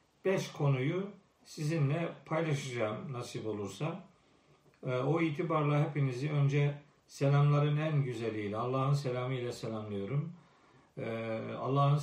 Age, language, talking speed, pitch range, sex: 50-69, Turkish, 90 wpm, 125-155 Hz, male